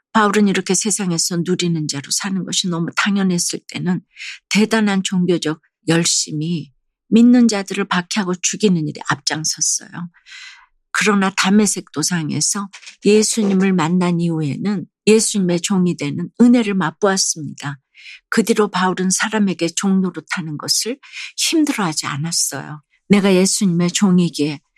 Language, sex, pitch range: Korean, female, 170-210 Hz